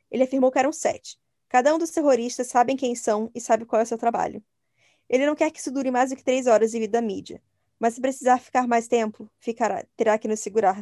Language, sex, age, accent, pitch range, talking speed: Portuguese, female, 10-29, Brazilian, 220-270 Hz, 245 wpm